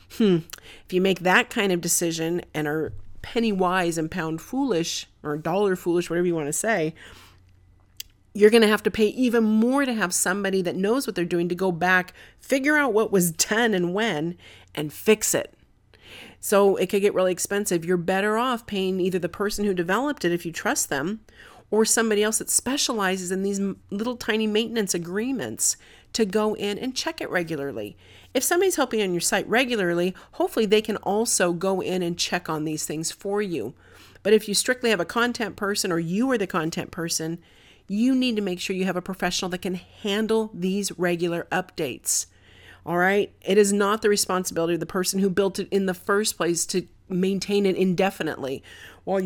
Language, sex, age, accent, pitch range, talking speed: English, female, 40-59, American, 175-220 Hz, 195 wpm